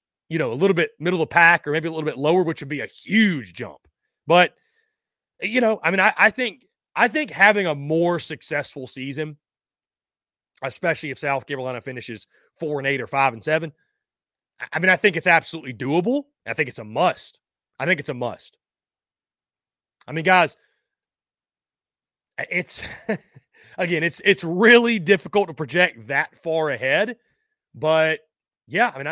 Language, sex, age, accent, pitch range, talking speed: English, male, 30-49, American, 140-195 Hz, 170 wpm